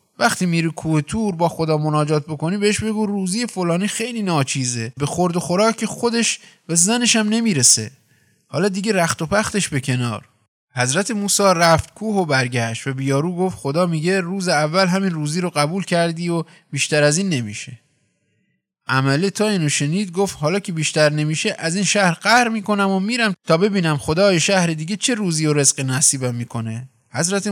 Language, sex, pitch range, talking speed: Persian, male, 140-195 Hz, 175 wpm